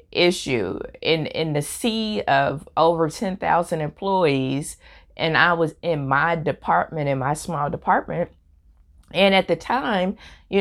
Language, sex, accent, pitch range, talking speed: English, female, American, 135-170 Hz, 135 wpm